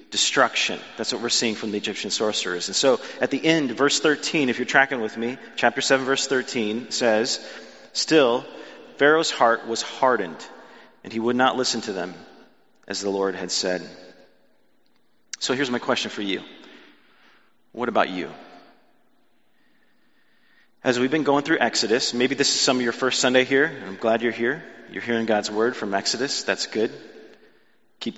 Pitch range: 110-130 Hz